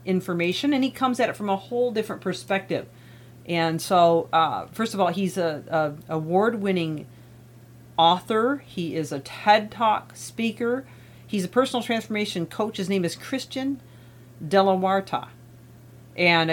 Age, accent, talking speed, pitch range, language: 40-59, American, 140 wpm, 140-195 Hz, English